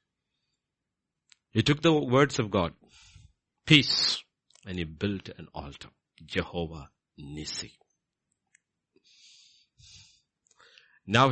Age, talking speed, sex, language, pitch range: 60-79, 80 wpm, male, English, 90-110 Hz